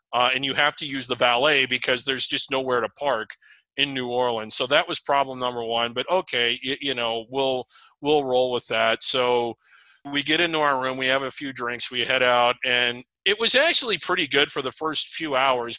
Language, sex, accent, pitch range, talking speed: English, male, American, 125-155 Hz, 220 wpm